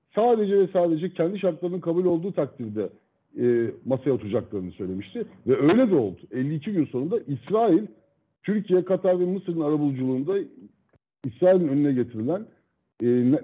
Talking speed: 135 wpm